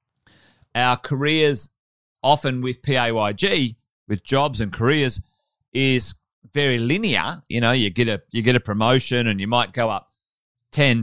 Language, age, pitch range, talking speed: English, 30-49, 110-135 Hz, 145 wpm